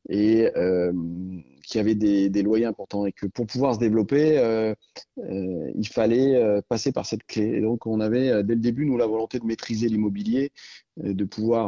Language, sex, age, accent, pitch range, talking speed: French, male, 30-49, French, 100-125 Hz, 205 wpm